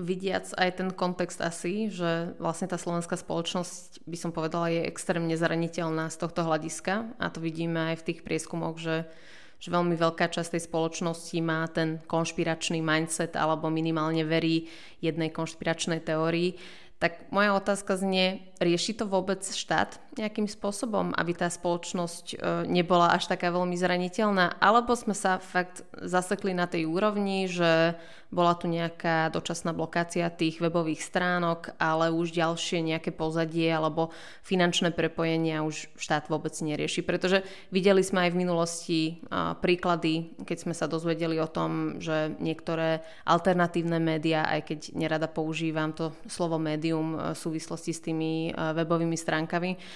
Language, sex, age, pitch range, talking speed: Slovak, female, 20-39, 160-180 Hz, 145 wpm